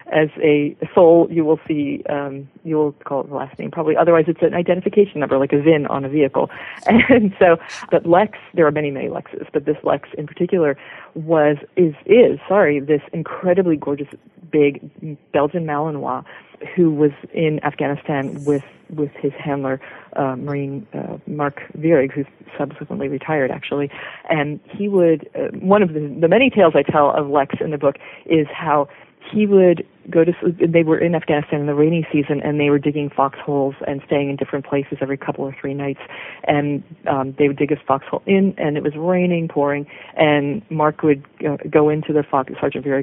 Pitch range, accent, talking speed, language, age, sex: 145-170 Hz, American, 190 wpm, English, 40-59, female